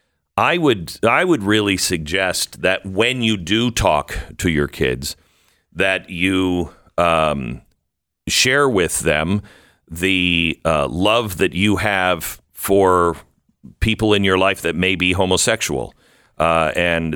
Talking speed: 130 wpm